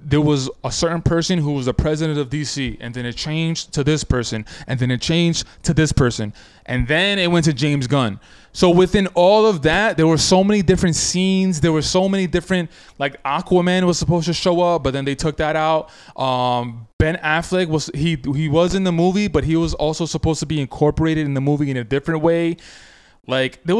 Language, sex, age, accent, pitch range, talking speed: English, male, 20-39, American, 135-175 Hz, 220 wpm